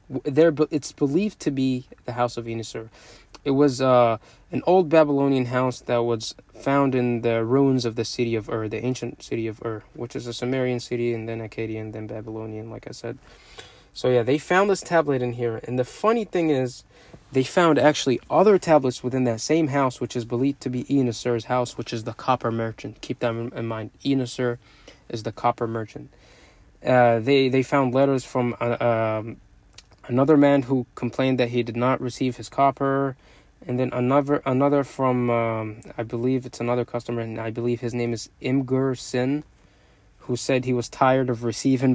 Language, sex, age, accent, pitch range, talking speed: English, male, 20-39, American, 120-140 Hz, 190 wpm